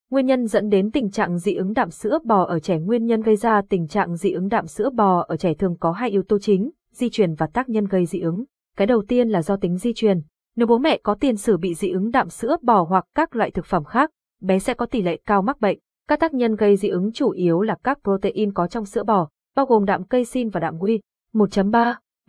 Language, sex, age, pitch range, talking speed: Vietnamese, female, 20-39, 185-230 Hz, 260 wpm